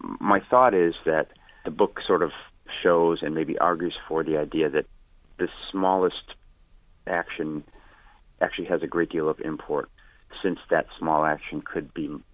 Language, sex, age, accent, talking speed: English, male, 40-59, American, 155 wpm